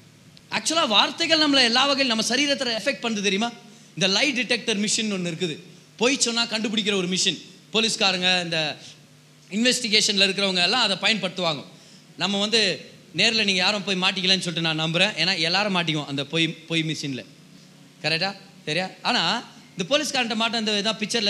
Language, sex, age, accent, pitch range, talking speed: Tamil, male, 20-39, native, 175-255 Hz, 145 wpm